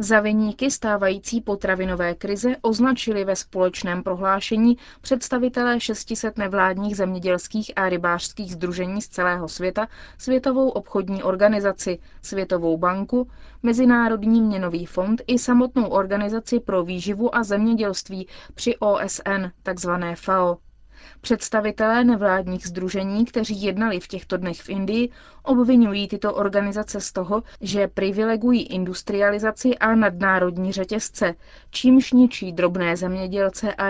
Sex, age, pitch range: female, 20-39, 190-230 Hz